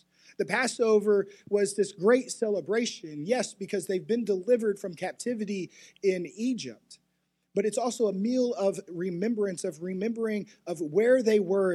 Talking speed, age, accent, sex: 145 wpm, 30-49, American, male